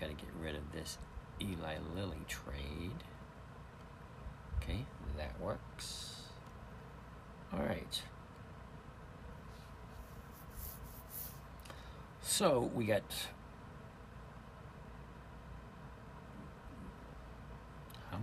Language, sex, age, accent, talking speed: English, male, 50-69, American, 60 wpm